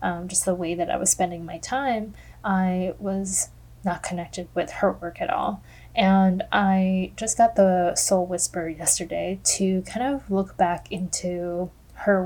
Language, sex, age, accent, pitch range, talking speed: English, female, 10-29, American, 180-200 Hz, 165 wpm